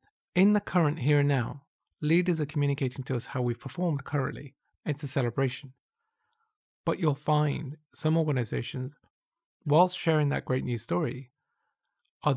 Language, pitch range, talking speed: English, 130-155 Hz, 145 wpm